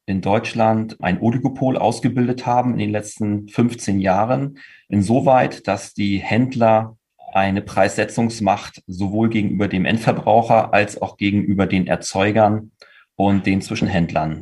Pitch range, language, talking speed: 100-120 Hz, German, 120 wpm